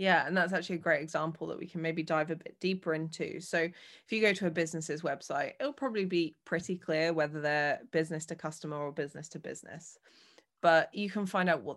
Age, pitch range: 20-39, 150-175 Hz